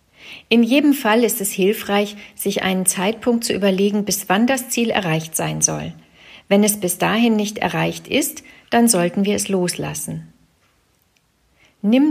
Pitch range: 175-230 Hz